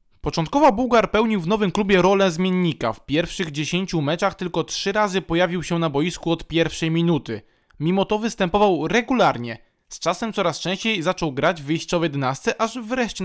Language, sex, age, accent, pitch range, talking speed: Polish, male, 20-39, native, 145-185 Hz, 170 wpm